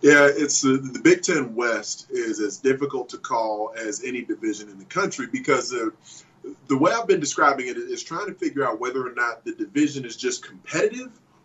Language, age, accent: English, 30-49, American